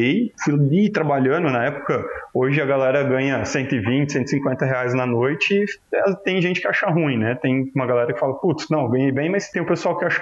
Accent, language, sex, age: Brazilian, Portuguese, male, 20-39